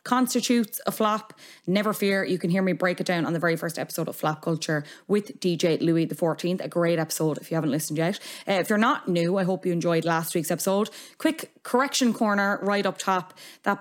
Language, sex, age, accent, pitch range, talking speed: English, female, 20-39, Irish, 165-225 Hz, 225 wpm